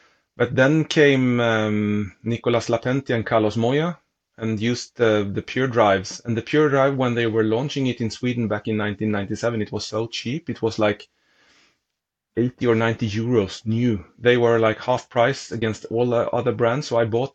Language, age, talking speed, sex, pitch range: English, 30-49, 185 wpm, male, 110-130 Hz